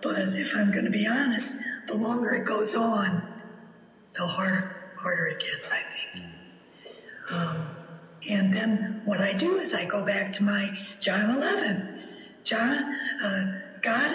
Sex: female